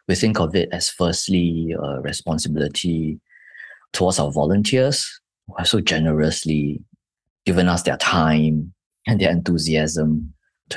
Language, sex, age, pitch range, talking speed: English, male, 20-39, 75-90 Hz, 130 wpm